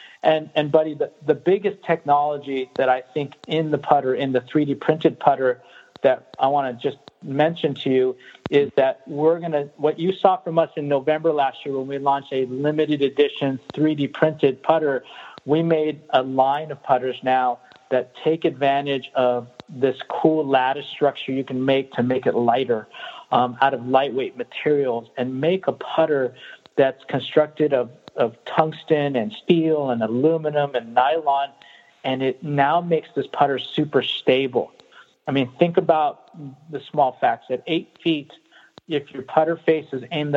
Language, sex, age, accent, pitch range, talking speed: English, male, 50-69, American, 130-160 Hz, 170 wpm